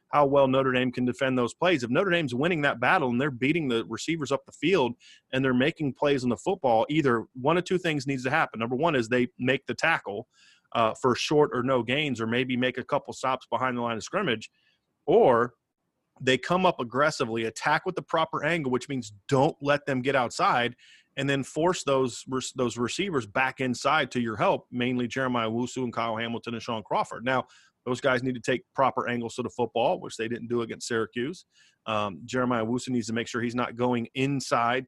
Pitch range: 115-140 Hz